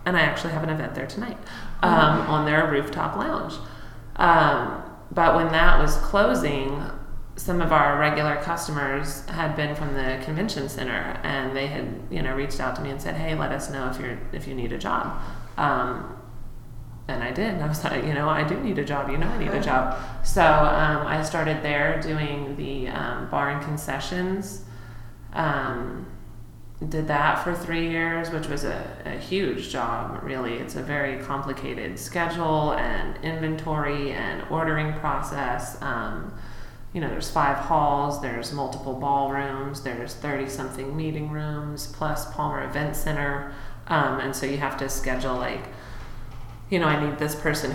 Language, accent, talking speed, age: English, American, 175 wpm, 30-49